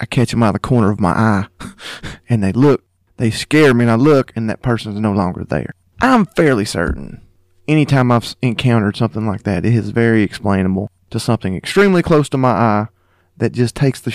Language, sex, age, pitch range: English, male, 30-49, 95-130 Hz